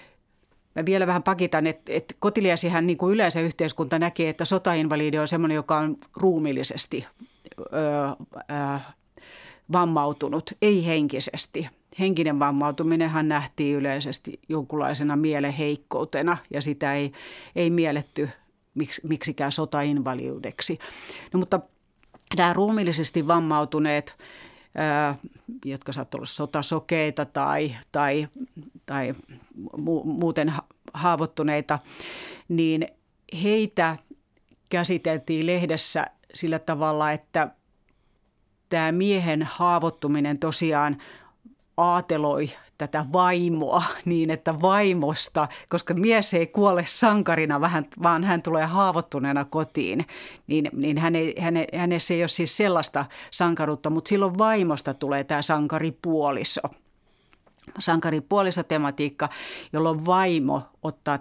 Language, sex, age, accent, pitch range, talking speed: Finnish, female, 40-59, native, 145-175 Hz, 100 wpm